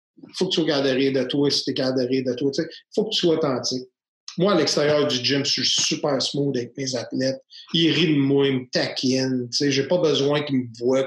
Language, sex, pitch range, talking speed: French, male, 135-175 Hz, 255 wpm